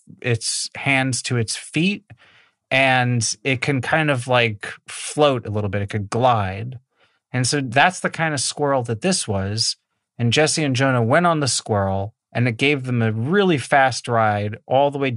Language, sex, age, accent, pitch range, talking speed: English, male, 30-49, American, 110-145 Hz, 185 wpm